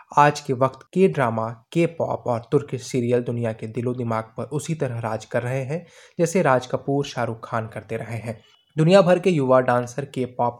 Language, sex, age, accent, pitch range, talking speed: English, male, 20-39, Indian, 115-140 Hz, 205 wpm